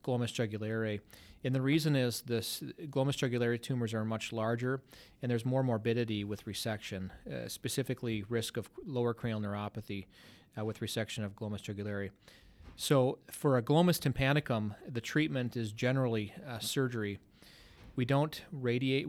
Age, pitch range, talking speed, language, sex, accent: 30-49, 110-130 Hz, 145 wpm, English, male, American